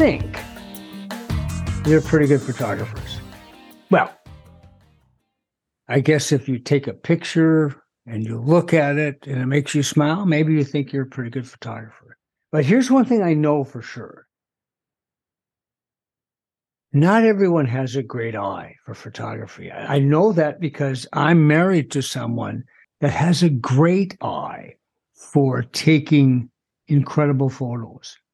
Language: English